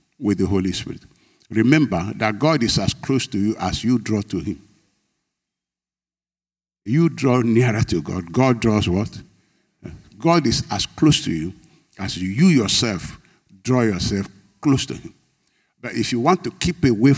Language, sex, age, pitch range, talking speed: English, male, 60-79, 100-135 Hz, 160 wpm